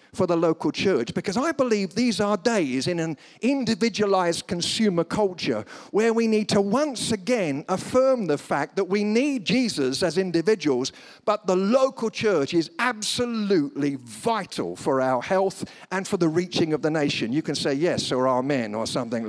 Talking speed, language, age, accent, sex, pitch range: 170 wpm, English, 50-69, British, male, 145-230 Hz